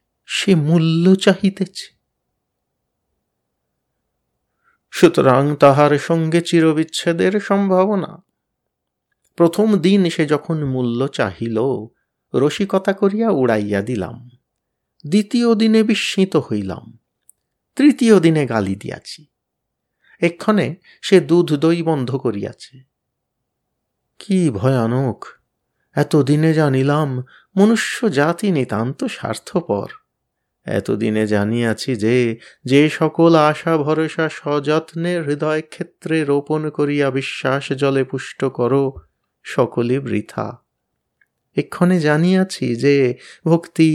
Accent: native